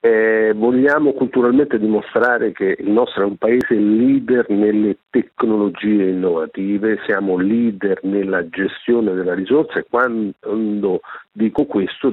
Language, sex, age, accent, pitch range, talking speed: Italian, male, 50-69, native, 95-120 Hz, 120 wpm